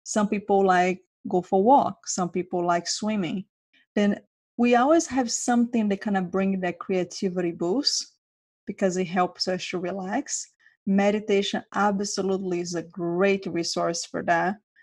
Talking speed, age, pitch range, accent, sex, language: 145 wpm, 30-49, 175-205 Hz, Brazilian, female, English